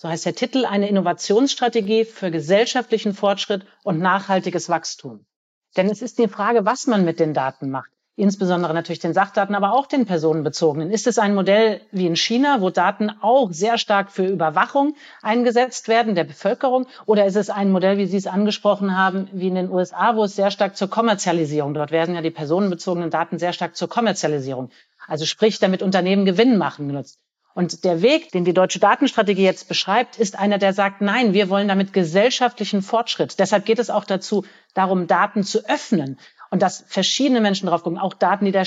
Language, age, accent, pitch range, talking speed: German, 40-59, German, 180-220 Hz, 190 wpm